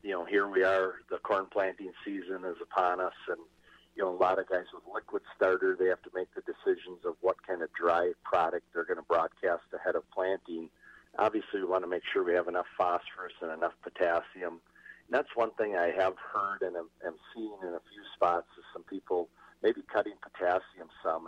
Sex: male